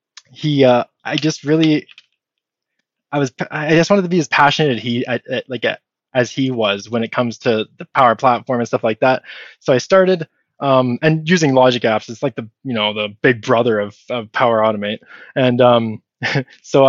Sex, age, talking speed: male, 20-39, 190 wpm